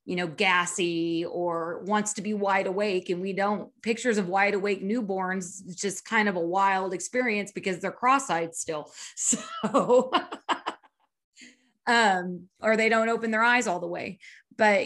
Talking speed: 160 wpm